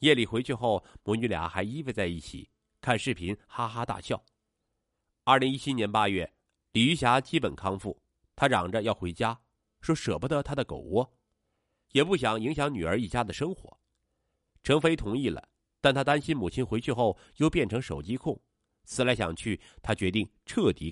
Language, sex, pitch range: Chinese, male, 95-140 Hz